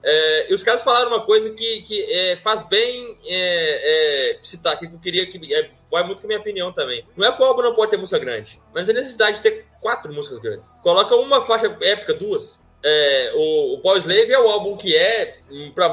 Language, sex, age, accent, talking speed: Portuguese, male, 20-39, Brazilian, 205 wpm